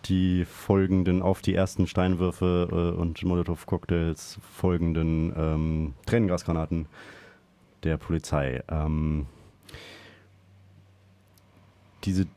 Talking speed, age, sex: 85 wpm, 30-49, male